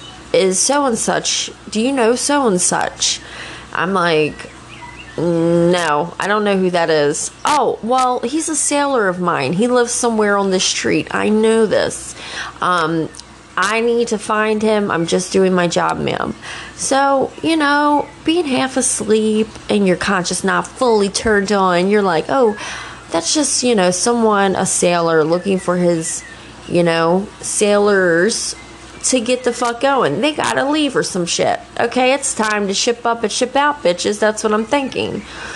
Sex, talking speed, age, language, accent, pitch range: female, 170 wpm, 20-39, English, American, 185-250 Hz